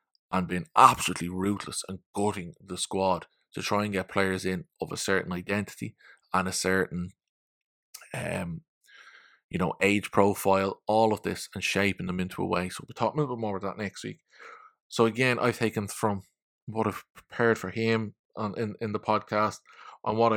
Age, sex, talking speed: 20-39, male, 190 wpm